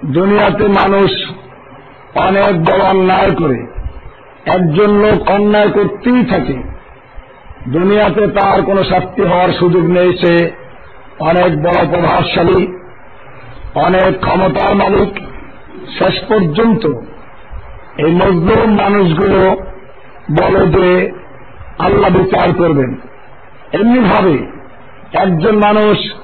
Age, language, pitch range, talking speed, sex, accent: 50-69, Bengali, 180-210 Hz, 55 wpm, male, native